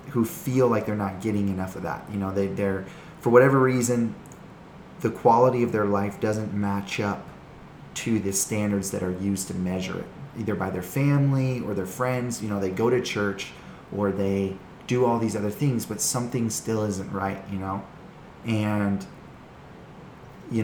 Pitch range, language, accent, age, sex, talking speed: 95-115 Hz, English, American, 20-39, male, 180 wpm